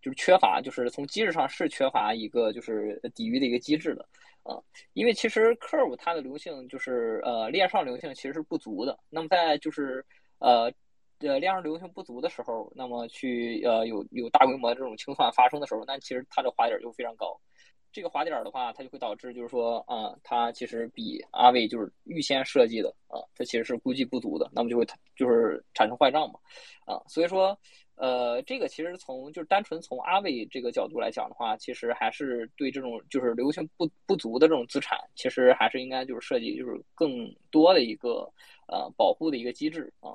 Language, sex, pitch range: Chinese, male, 125-195 Hz